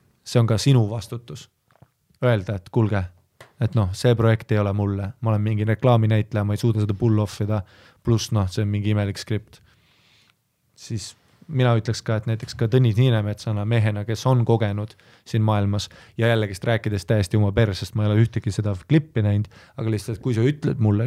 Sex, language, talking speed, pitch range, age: male, English, 190 wpm, 105-125 Hz, 20-39